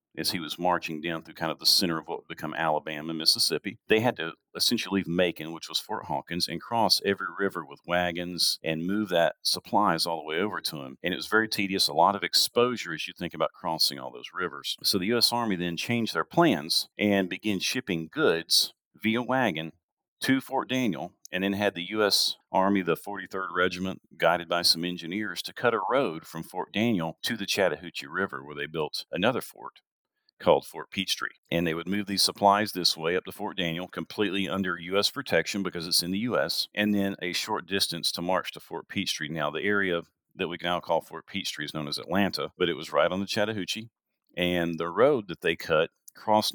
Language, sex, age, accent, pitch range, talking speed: English, male, 40-59, American, 85-105 Hz, 215 wpm